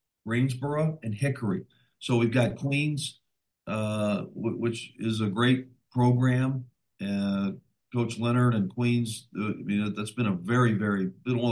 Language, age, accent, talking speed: English, 50-69, American, 160 wpm